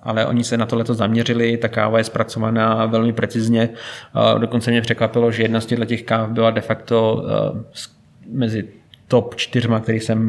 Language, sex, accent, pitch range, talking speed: Czech, male, native, 115-120 Hz, 170 wpm